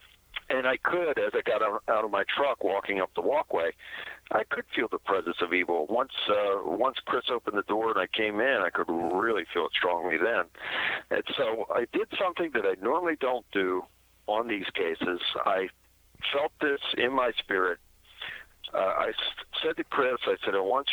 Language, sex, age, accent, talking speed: English, male, 50-69, American, 190 wpm